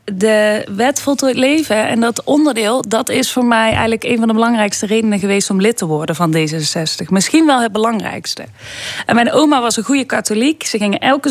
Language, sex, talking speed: Dutch, female, 200 wpm